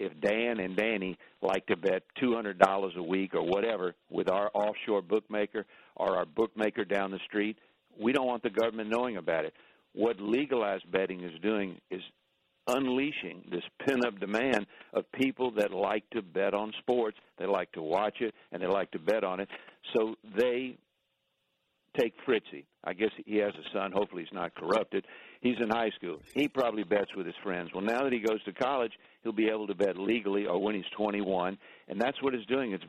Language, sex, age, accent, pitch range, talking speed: English, male, 60-79, American, 95-115 Hz, 195 wpm